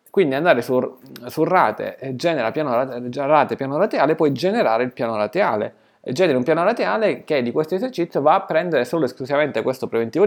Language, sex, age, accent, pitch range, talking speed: Italian, male, 20-39, native, 115-165 Hz, 195 wpm